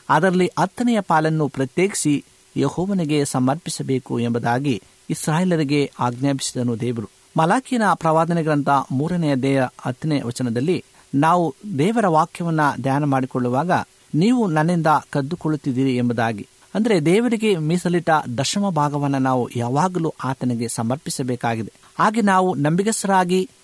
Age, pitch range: 50-69, 135-180 Hz